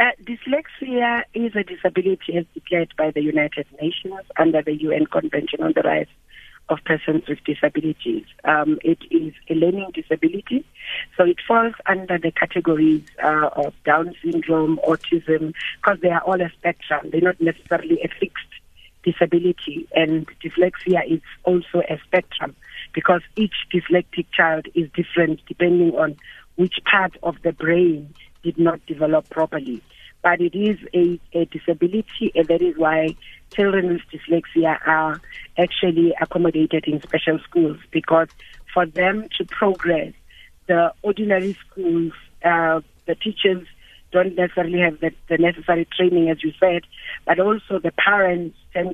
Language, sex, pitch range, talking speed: English, female, 160-190 Hz, 145 wpm